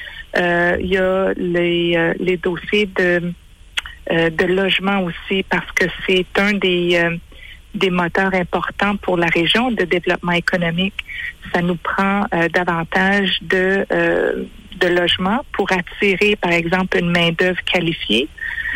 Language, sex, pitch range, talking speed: English, female, 170-195 Hz, 145 wpm